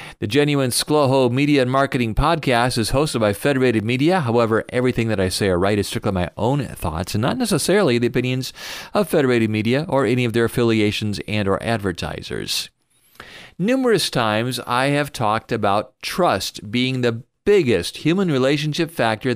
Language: English